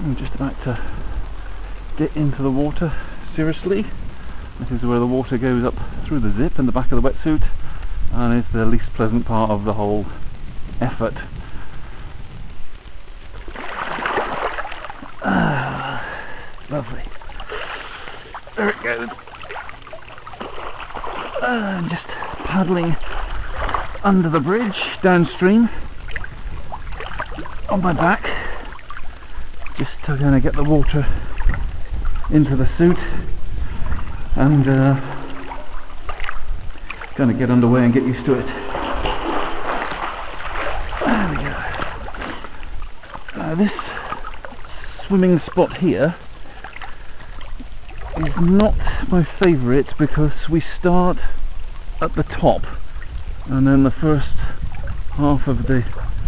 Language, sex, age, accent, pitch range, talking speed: English, male, 50-69, British, 105-160 Hz, 100 wpm